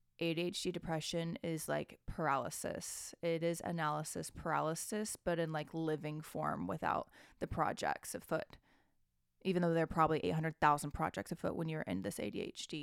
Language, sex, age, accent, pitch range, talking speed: English, female, 20-39, American, 160-190 Hz, 145 wpm